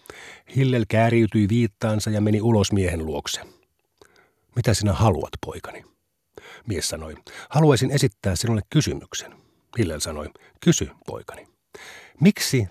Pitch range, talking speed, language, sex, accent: 105-135 Hz, 110 wpm, Finnish, male, native